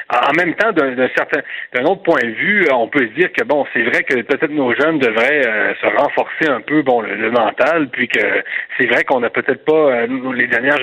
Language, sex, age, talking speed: French, male, 30-49, 245 wpm